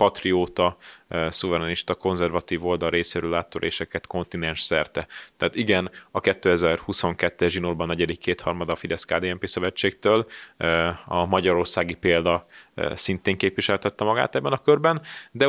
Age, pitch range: 30-49, 85-105 Hz